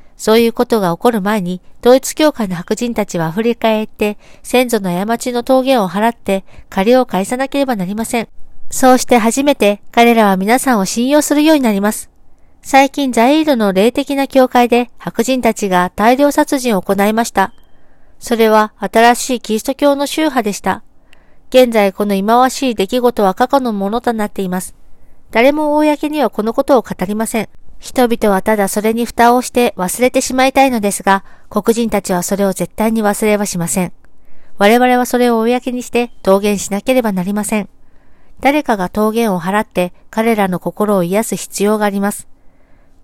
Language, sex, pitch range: Japanese, female, 200-255 Hz